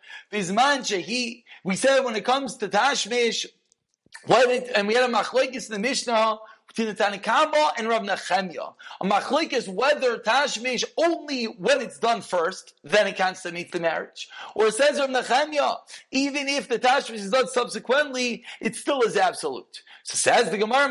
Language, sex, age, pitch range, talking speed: English, male, 40-59, 215-280 Hz, 175 wpm